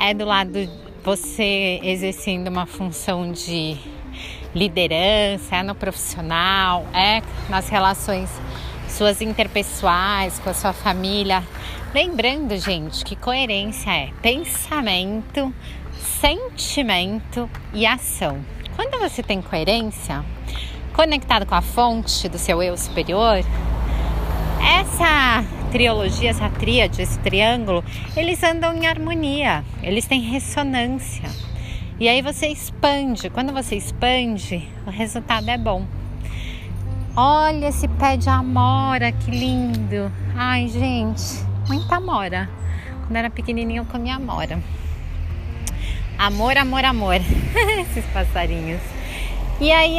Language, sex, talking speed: Portuguese, female, 110 wpm